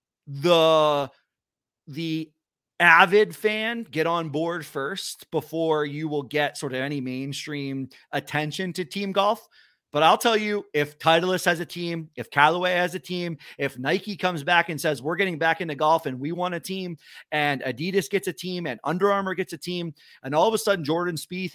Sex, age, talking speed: male, 30-49, 190 wpm